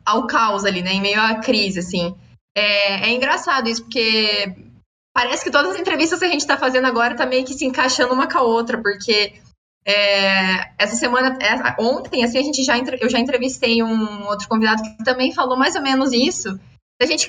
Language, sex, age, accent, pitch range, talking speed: Portuguese, female, 20-39, Brazilian, 225-290 Hz, 185 wpm